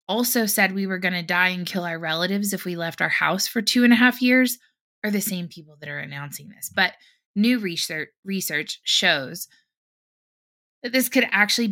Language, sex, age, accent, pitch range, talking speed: English, female, 20-39, American, 175-225 Hz, 200 wpm